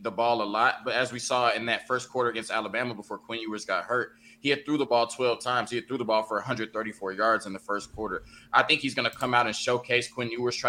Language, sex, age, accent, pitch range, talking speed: English, male, 20-39, American, 105-120 Hz, 280 wpm